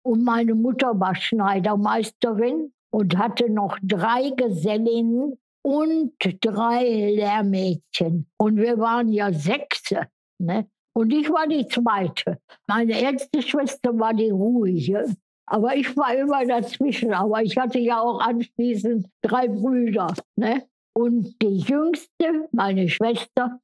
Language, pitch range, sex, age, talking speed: German, 210-260 Hz, female, 60-79, 125 wpm